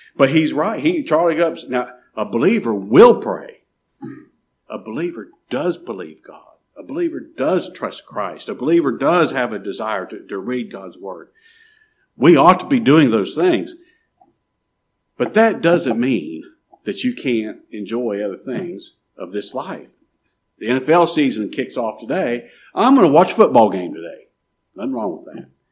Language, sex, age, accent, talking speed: English, male, 50-69, American, 165 wpm